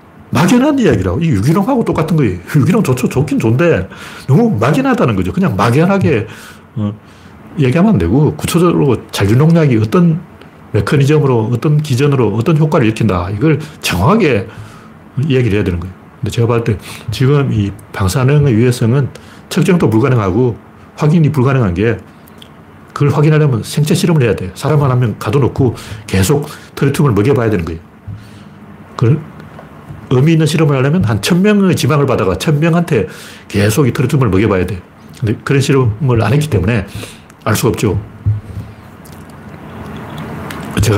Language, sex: Korean, male